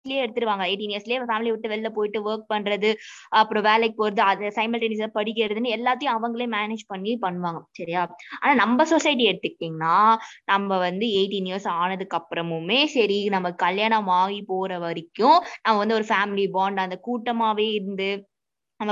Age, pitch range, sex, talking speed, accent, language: 20-39, 200-250 Hz, female, 85 wpm, native, Tamil